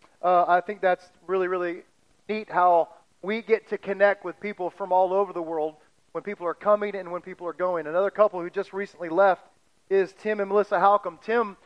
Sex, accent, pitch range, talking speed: male, American, 180-215 Hz, 205 wpm